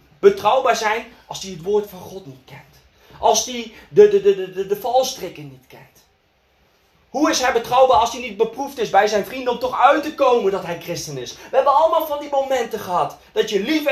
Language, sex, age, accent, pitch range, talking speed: Dutch, male, 30-49, Dutch, 190-300 Hz, 210 wpm